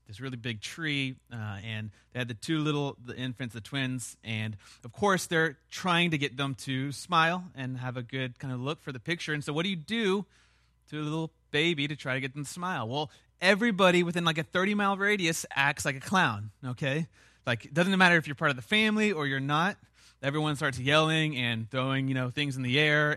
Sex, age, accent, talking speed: male, 30-49, American, 230 wpm